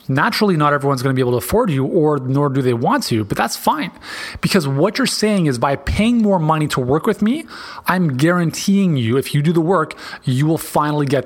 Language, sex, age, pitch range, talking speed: English, male, 30-49, 140-185 Hz, 235 wpm